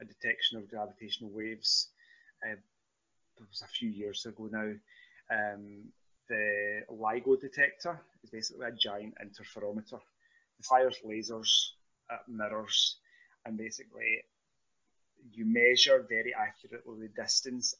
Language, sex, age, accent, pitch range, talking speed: English, male, 30-49, British, 110-140 Hz, 120 wpm